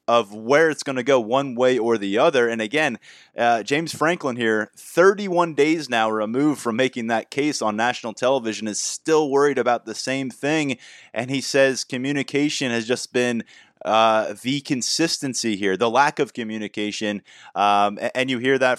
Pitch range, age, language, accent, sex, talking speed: 115-140 Hz, 30-49, English, American, male, 175 wpm